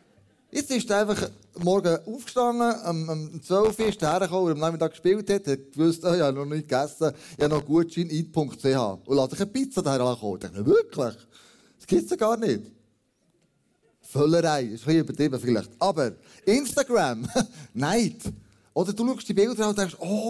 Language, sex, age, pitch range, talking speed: German, male, 30-49, 145-210 Hz, 180 wpm